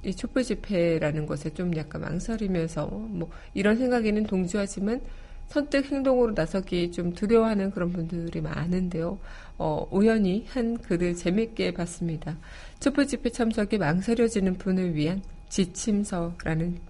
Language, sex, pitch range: Korean, female, 165-210 Hz